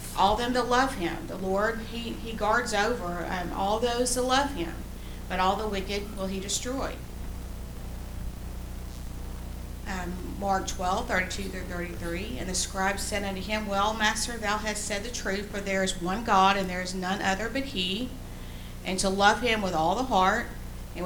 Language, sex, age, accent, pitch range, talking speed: English, female, 50-69, American, 180-215 Hz, 180 wpm